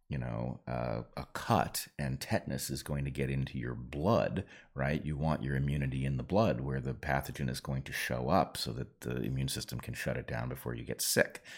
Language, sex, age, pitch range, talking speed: English, male, 40-59, 70-85 Hz, 225 wpm